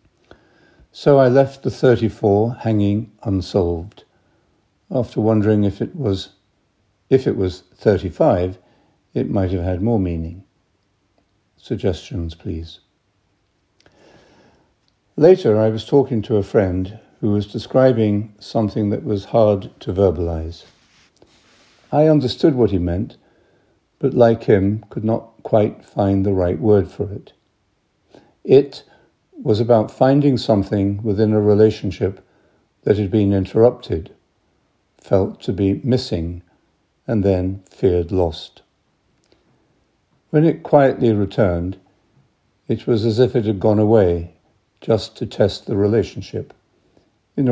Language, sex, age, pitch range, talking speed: English, male, 60-79, 95-115 Hz, 120 wpm